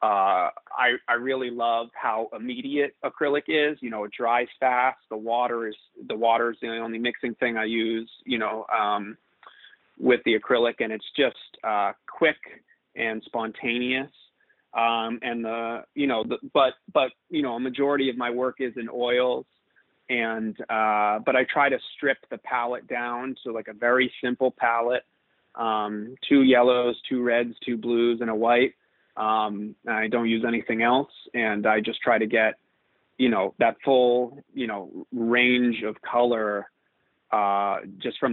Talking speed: 170 wpm